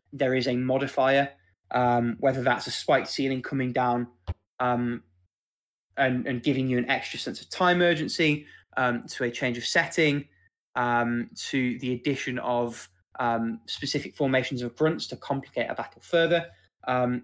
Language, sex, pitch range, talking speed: English, male, 120-140 Hz, 155 wpm